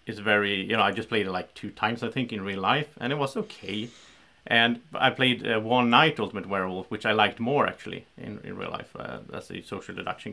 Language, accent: English, Norwegian